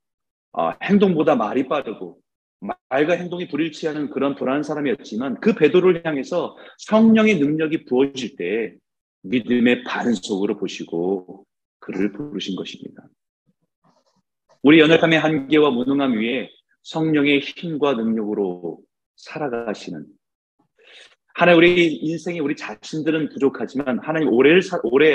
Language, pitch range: Korean, 115-165 Hz